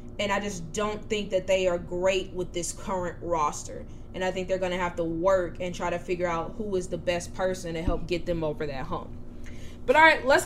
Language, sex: English, female